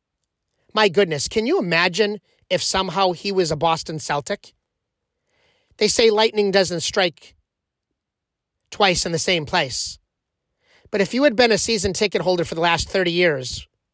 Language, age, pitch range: English, 30-49, 170-230 Hz